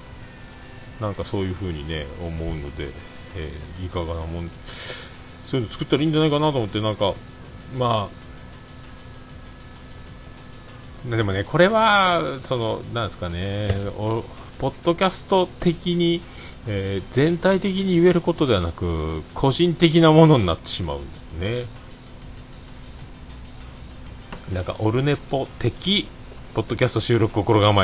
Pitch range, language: 85-130 Hz, Japanese